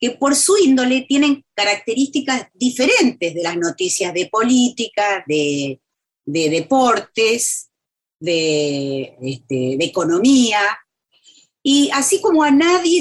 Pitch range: 180-270 Hz